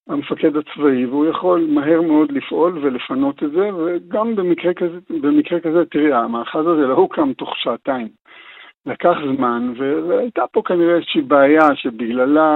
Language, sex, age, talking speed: Hebrew, male, 60-79, 140 wpm